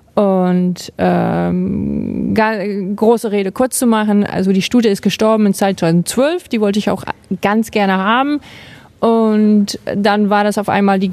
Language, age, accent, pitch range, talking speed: German, 30-49, German, 200-240 Hz, 155 wpm